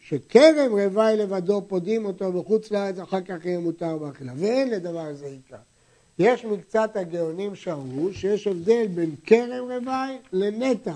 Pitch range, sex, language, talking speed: 160-220 Hz, male, Hebrew, 140 wpm